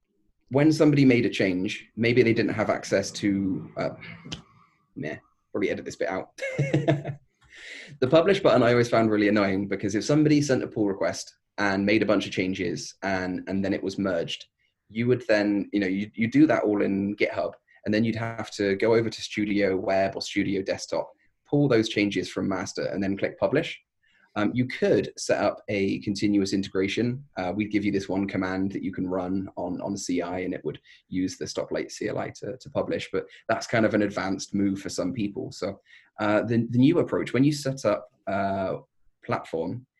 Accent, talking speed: British, 200 wpm